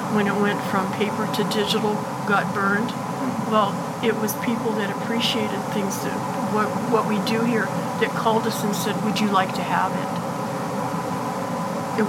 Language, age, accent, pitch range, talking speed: English, 50-69, American, 195-230 Hz, 170 wpm